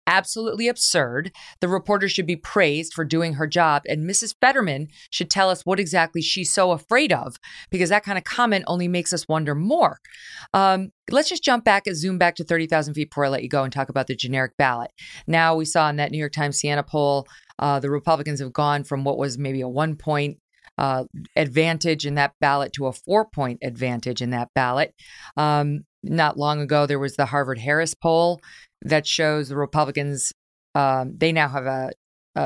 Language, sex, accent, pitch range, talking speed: English, female, American, 140-170 Hz, 205 wpm